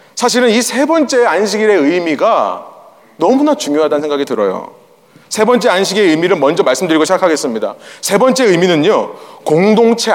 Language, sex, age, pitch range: Korean, male, 30-49, 175-240 Hz